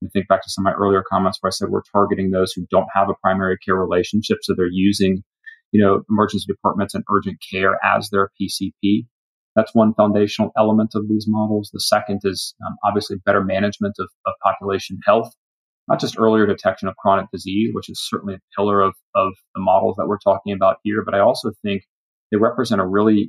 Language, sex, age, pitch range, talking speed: English, male, 30-49, 95-105 Hz, 210 wpm